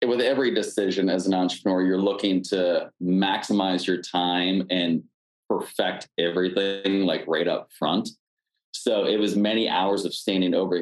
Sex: male